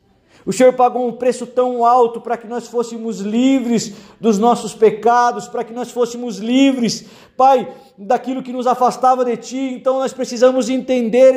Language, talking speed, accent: Portuguese, 165 wpm, Brazilian